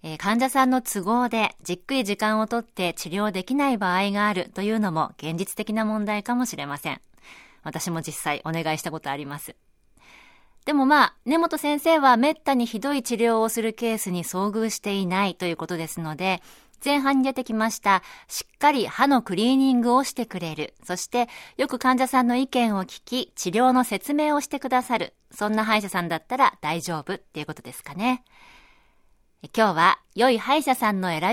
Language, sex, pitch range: Japanese, female, 175-255 Hz